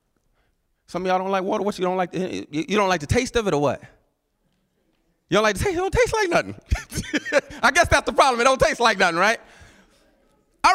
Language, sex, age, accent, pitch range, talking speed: English, male, 30-49, American, 190-280 Hz, 230 wpm